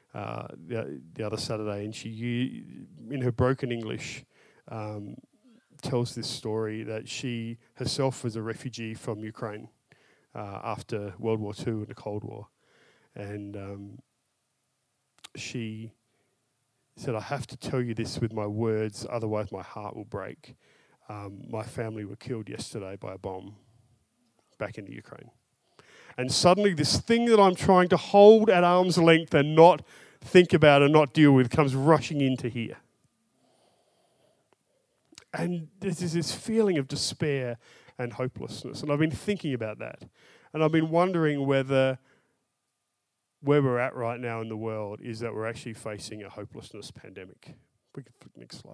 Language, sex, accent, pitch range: English, male, Australian, 110-145 Hz